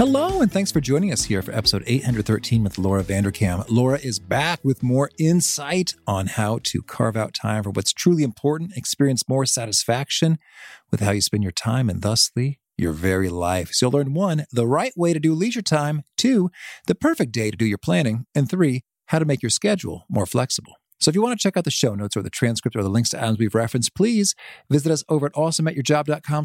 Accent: American